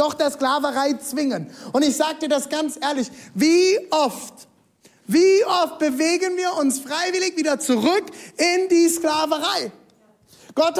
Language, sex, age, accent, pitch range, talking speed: German, male, 30-49, German, 265-325 Hz, 140 wpm